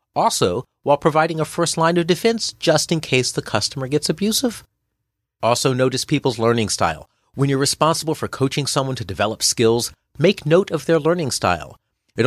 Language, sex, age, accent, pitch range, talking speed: English, male, 40-59, American, 110-165 Hz, 175 wpm